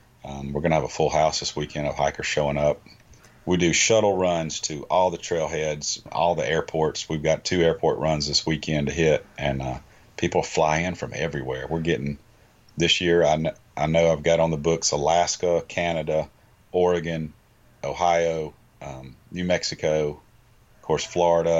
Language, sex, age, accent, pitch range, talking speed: English, male, 40-59, American, 75-90 Hz, 180 wpm